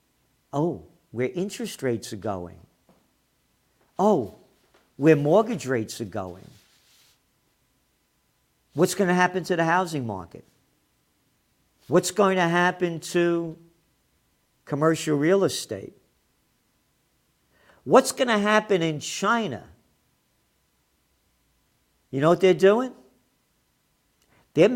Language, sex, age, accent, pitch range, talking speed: English, male, 50-69, American, 125-180 Hz, 95 wpm